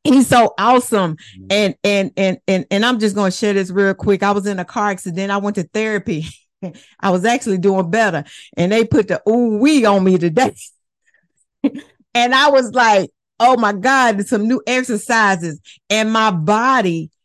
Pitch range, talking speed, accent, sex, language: 205-280 Hz, 185 wpm, American, female, English